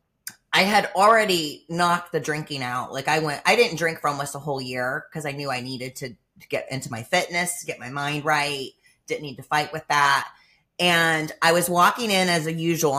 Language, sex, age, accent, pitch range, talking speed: English, female, 30-49, American, 140-175 Hz, 210 wpm